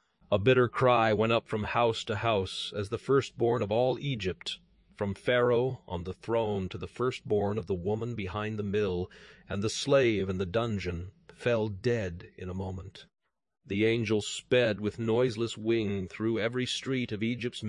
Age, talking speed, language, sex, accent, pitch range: 40-59, 175 wpm, English, male, American, 100-130 Hz